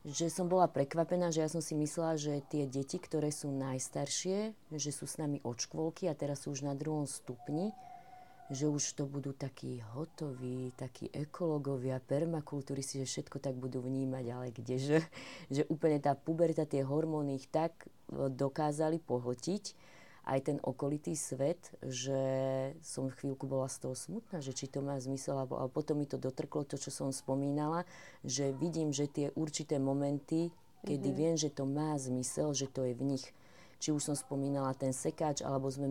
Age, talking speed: 30-49, 175 wpm